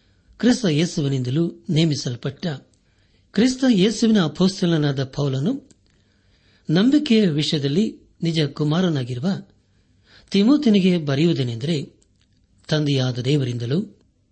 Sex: male